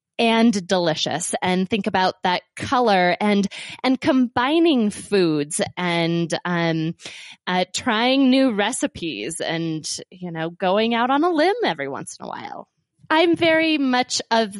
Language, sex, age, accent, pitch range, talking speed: English, female, 20-39, American, 185-245 Hz, 140 wpm